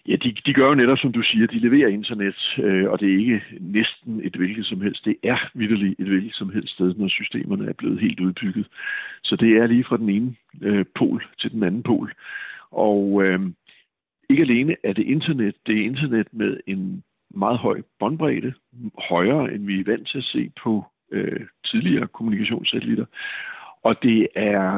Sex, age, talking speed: male, 60-79, 190 wpm